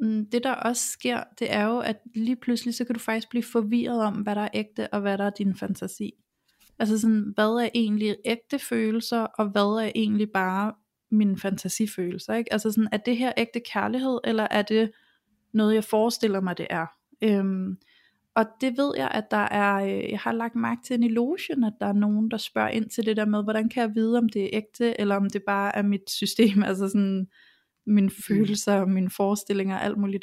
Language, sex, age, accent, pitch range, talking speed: Danish, female, 30-49, native, 200-235 Hz, 210 wpm